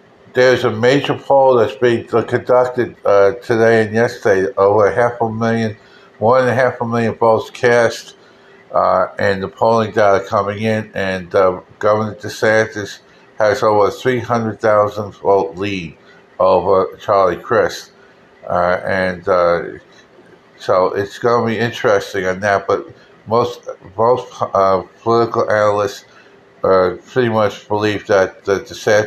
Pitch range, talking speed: 100-115 Hz, 135 wpm